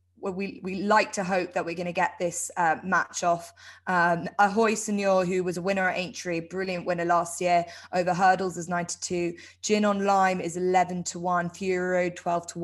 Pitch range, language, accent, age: 175-205 Hz, English, British, 20-39